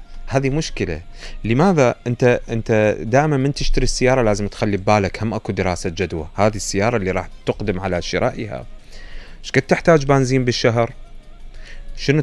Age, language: 30-49, Arabic